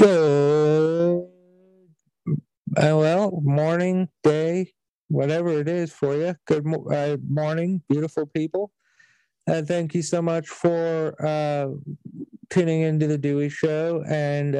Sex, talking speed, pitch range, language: male, 110 wpm, 145-170 Hz, English